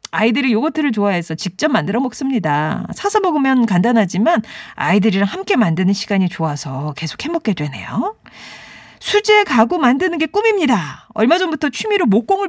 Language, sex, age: Korean, female, 40-59